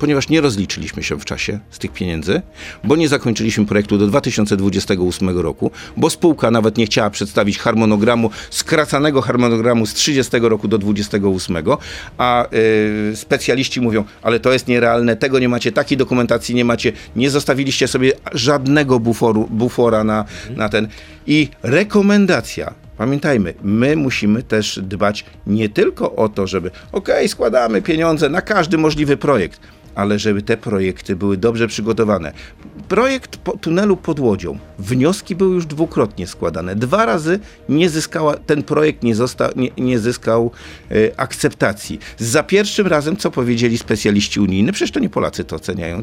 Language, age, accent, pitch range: Polish, 50-69, native, 105-150 Hz